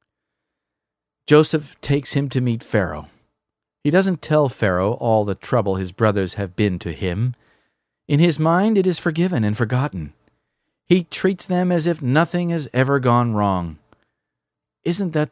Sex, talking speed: male, 155 wpm